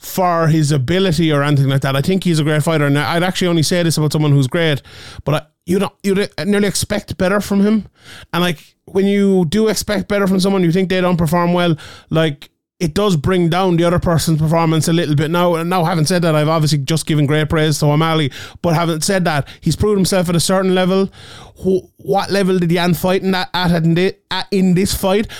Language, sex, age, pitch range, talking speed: English, male, 20-39, 145-180 Hz, 220 wpm